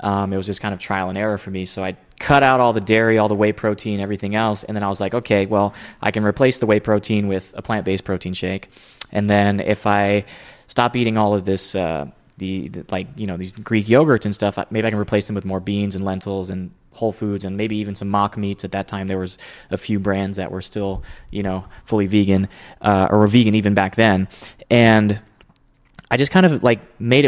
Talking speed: 240 wpm